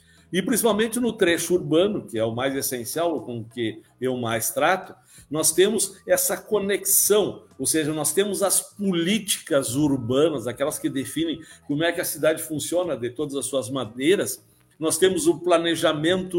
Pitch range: 145-210 Hz